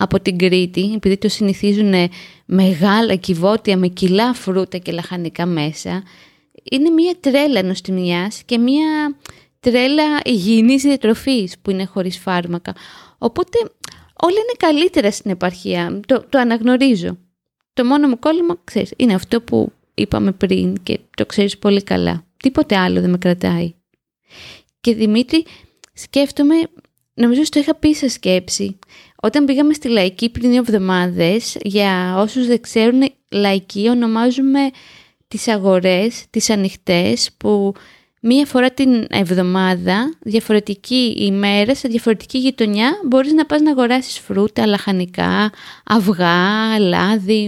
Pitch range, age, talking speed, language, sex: 190-260 Hz, 20-39, 125 wpm, Greek, female